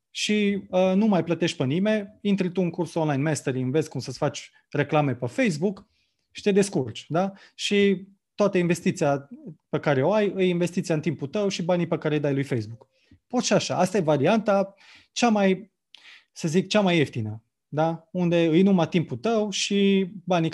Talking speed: 190 wpm